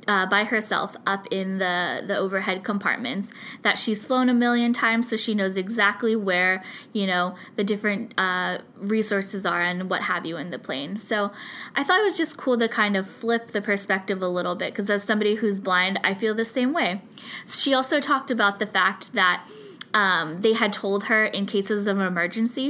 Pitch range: 190-225 Hz